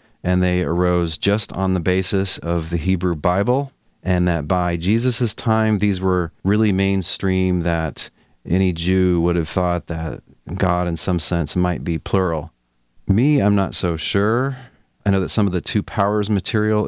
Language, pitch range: English, 80-95 Hz